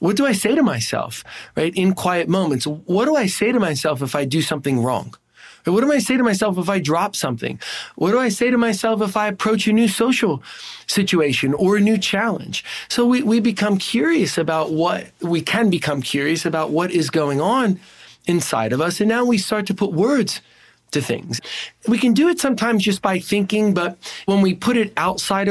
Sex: male